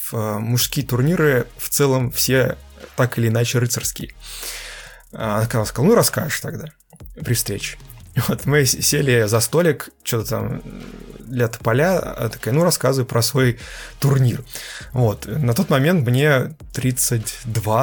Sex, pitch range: male, 115-140 Hz